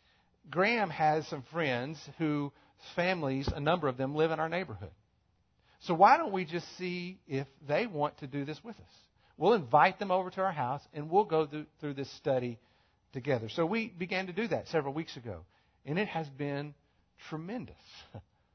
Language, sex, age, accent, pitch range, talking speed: English, male, 50-69, American, 140-180 Hz, 180 wpm